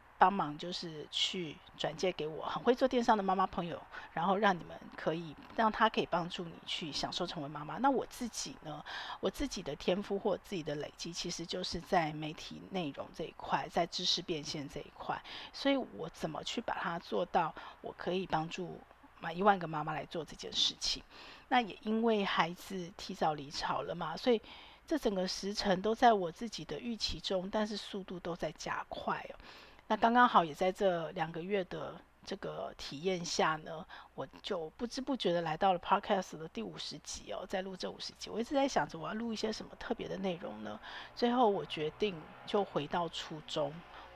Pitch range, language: 170-220 Hz, Chinese